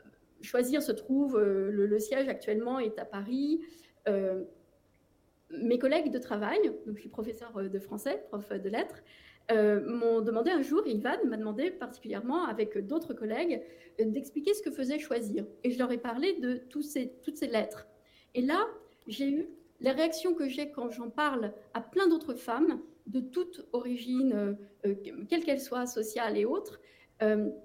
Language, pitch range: French, 220-310 Hz